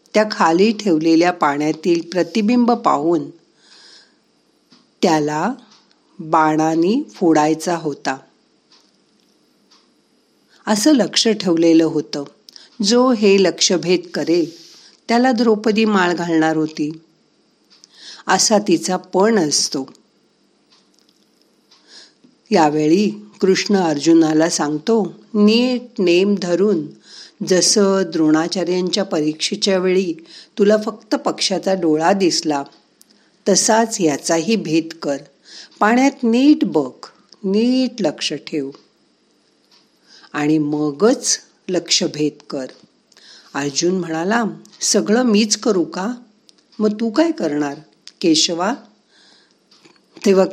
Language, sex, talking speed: Marathi, female, 60 wpm